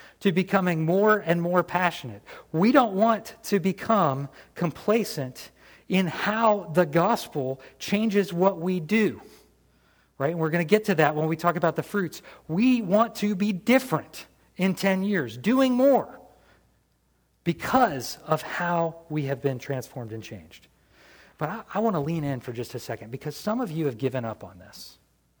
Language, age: English, 40-59